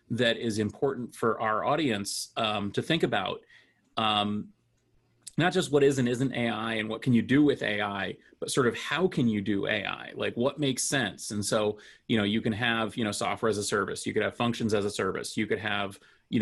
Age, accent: 30-49, American